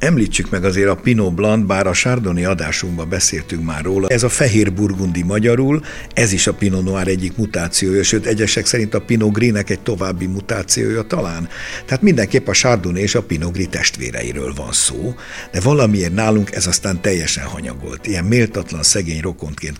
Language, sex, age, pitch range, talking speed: Hungarian, male, 60-79, 85-110 Hz, 175 wpm